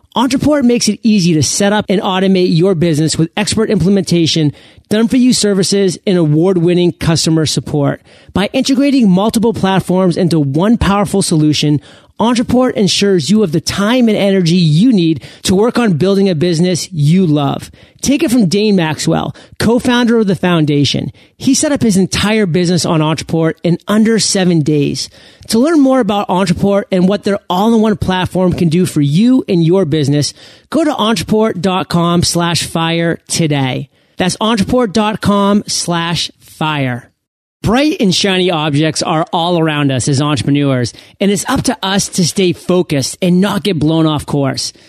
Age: 30-49